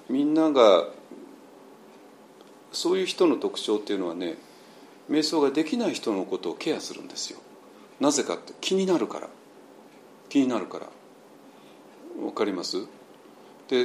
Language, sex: Japanese, male